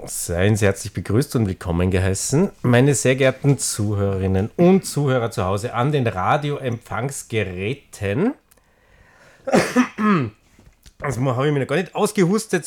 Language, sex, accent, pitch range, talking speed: German, male, Austrian, 95-135 Hz, 125 wpm